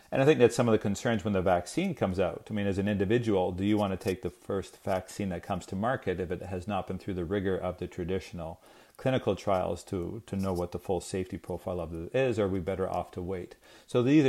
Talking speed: 265 wpm